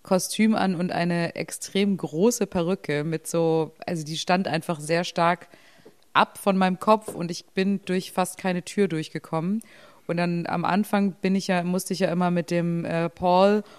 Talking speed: 180 wpm